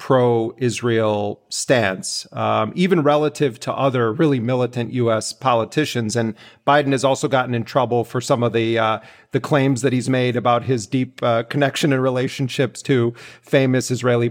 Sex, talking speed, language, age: male, 160 wpm, English, 40-59